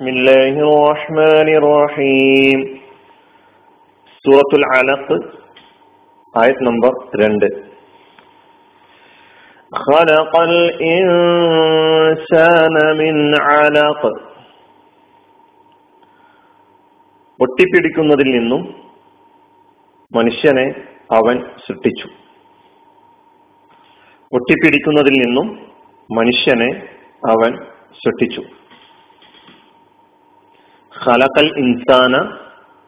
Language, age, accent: Malayalam, 40-59, native